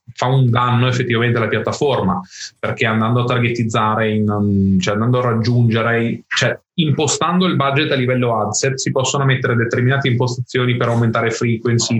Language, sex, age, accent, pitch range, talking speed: Italian, male, 20-39, native, 110-130 Hz, 160 wpm